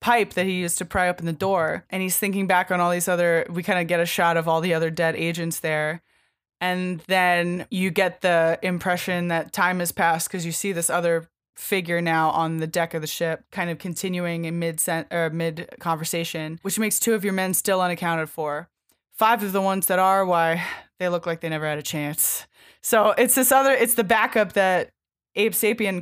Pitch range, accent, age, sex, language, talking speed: 165-195 Hz, American, 20-39, female, English, 210 wpm